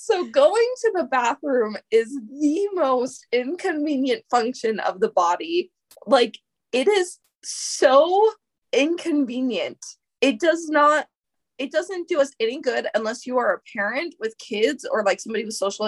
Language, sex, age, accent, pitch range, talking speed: English, female, 20-39, American, 220-295 Hz, 145 wpm